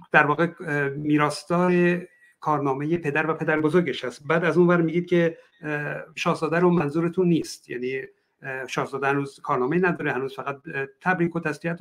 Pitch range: 145-180 Hz